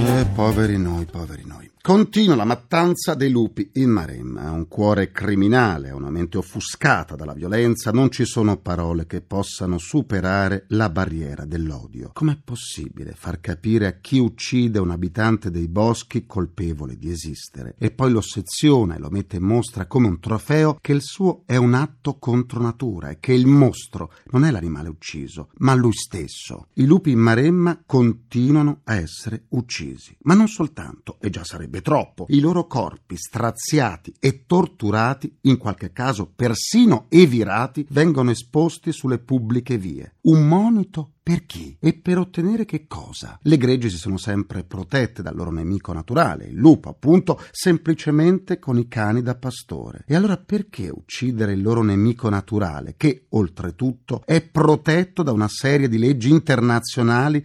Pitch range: 100-145 Hz